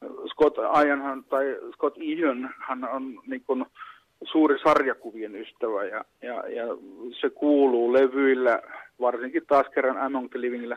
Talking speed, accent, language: 130 wpm, native, Finnish